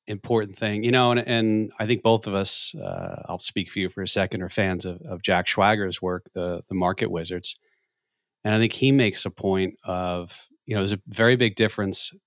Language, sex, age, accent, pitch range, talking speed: English, male, 40-59, American, 90-110 Hz, 220 wpm